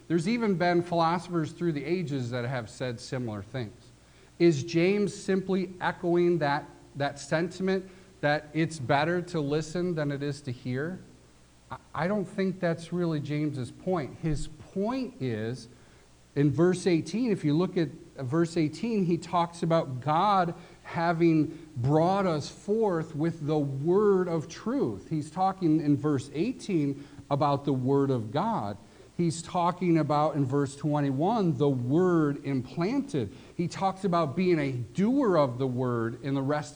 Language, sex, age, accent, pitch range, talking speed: English, male, 50-69, American, 140-180 Hz, 150 wpm